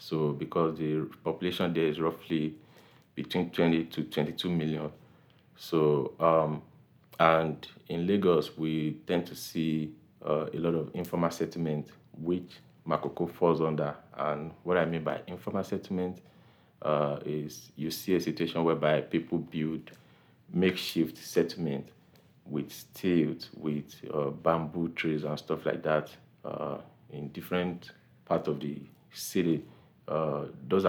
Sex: male